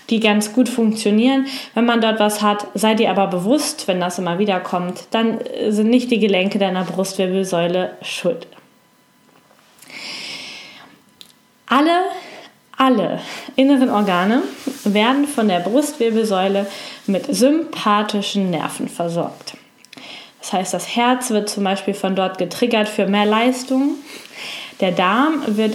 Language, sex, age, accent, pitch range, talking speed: German, female, 10-29, German, 200-255 Hz, 125 wpm